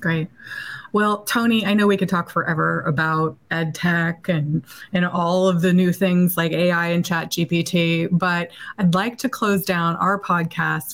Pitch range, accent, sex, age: 160-200 Hz, American, female, 30-49